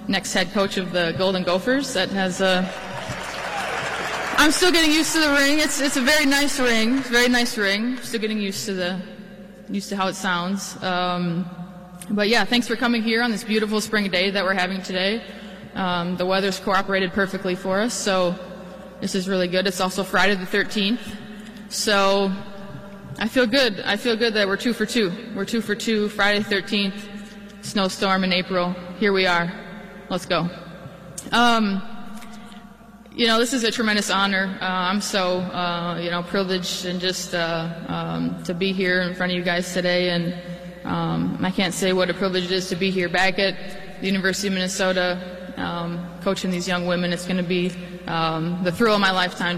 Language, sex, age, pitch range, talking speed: English, female, 20-39, 180-205 Hz, 195 wpm